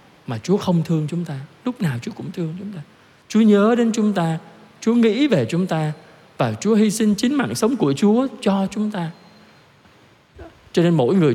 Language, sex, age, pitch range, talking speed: Vietnamese, male, 20-39, 135-175 Hz, 205 wpm